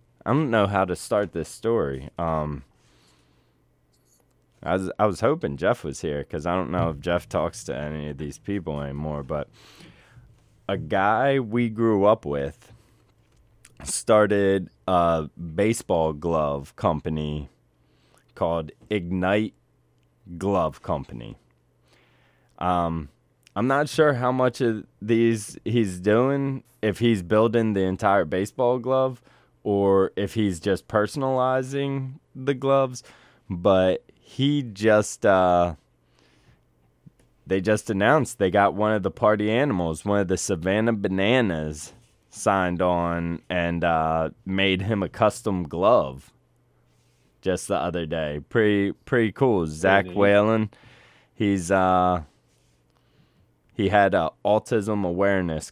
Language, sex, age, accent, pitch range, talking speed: English, male, 20-39, American, 75-110 Hz, 125 wpm